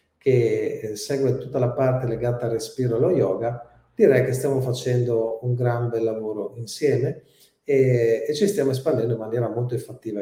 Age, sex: 40-59, male